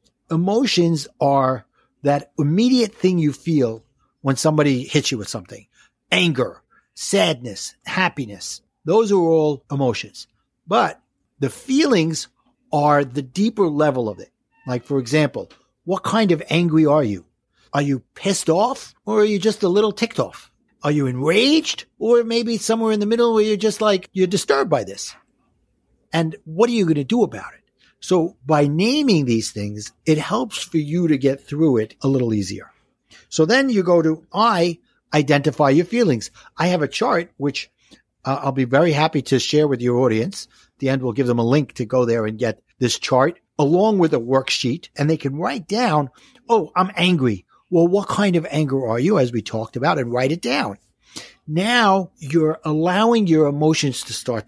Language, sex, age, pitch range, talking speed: English, male, 60-79, 130-195 Hz, 180 wpm